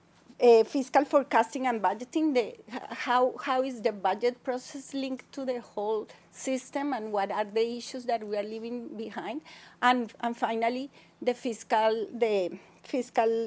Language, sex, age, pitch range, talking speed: English, female, 40-59, 205-250 Hz, 150 wpm